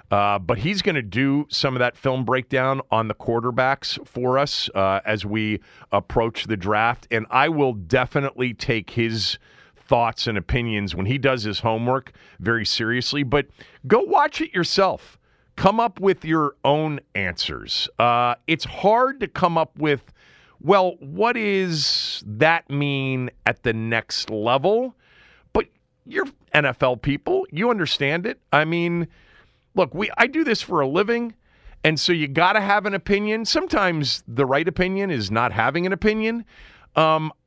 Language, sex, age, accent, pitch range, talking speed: English, male, 40-59, American, 115-175 Hz, 160 wpm